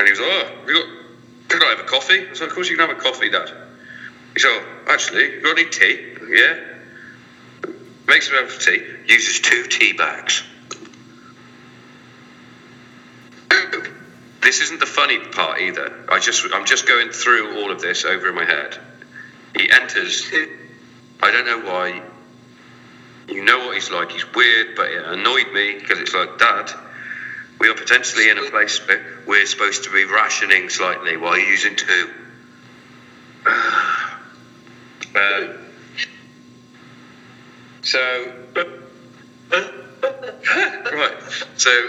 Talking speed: 140 wpm